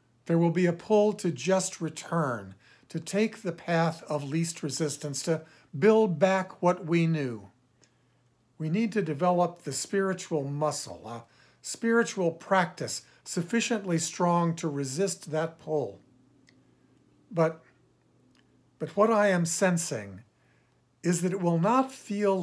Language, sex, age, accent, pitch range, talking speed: English, male, 50-69, American, 150-195 Hz, 130 wpm